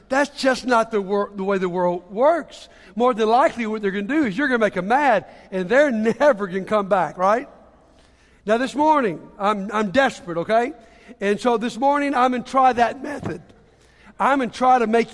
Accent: American